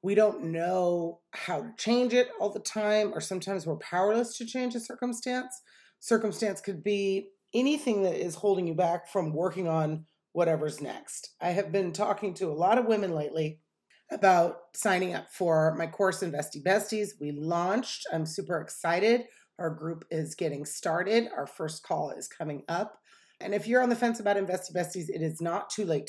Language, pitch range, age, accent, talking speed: English, 160-205 Hz, 30-49, American, 185 wpm